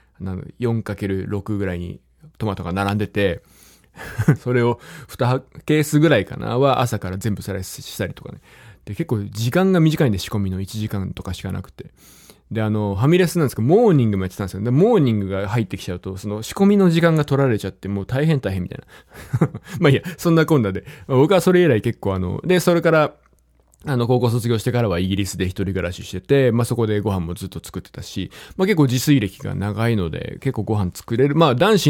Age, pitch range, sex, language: 20-39, 95-135 Hz, male, Japanese